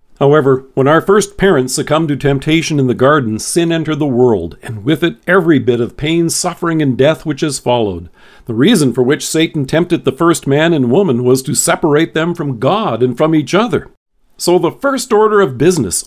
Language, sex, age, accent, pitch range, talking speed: English, male, 50-69, American, 130-170 Hz, 205 wpm